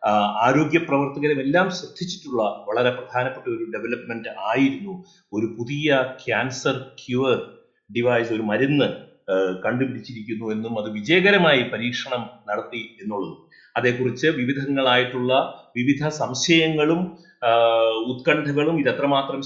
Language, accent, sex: Malayalam, native, male